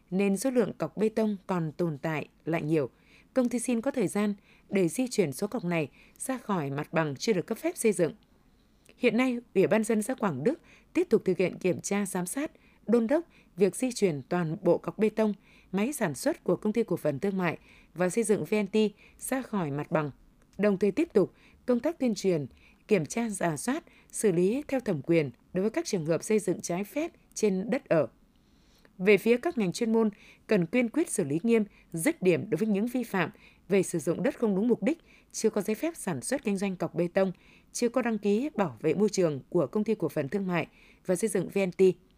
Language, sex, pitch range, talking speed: Vietnamese, female, 175-230 Hz, 230 wpm